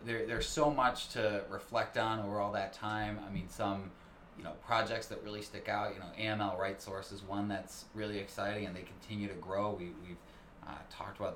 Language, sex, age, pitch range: English, male, 20-39, 95-110 Hz